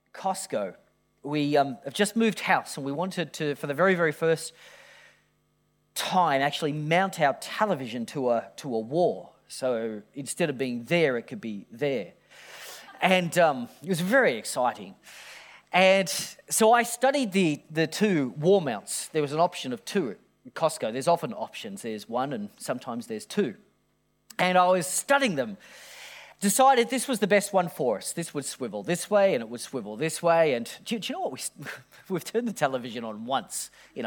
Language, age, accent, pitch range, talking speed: English, 40-59, Australian, 150-215 Hz, 185 wpm